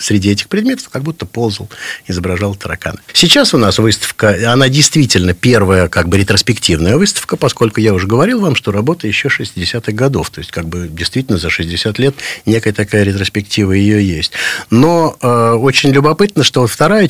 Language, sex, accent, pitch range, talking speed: Russian, male, native, 95-140 Hz, 170 wpm